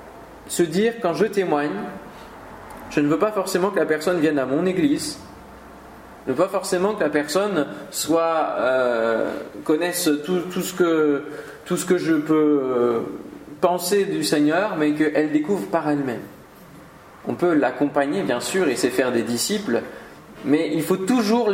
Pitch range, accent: 150-195 Hz, French